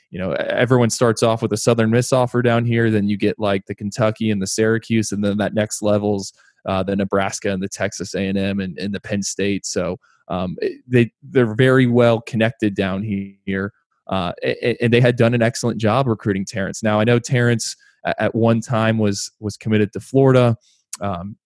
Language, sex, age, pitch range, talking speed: English, male, 20-39, 100-115 Hz, 200 wpm